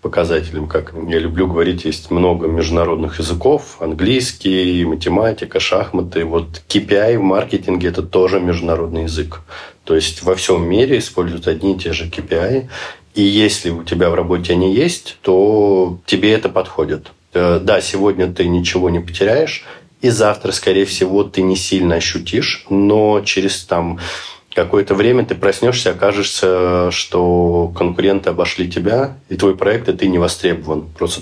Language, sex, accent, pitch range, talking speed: Russian, male, native, 85-100 Hz, 150 wpm